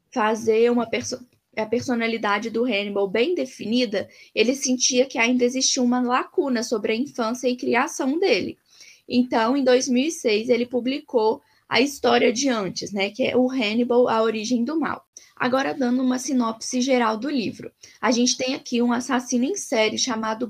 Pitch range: 230-270 Hz